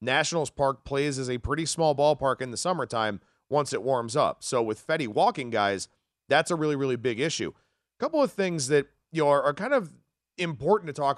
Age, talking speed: 40-59, 210 wpm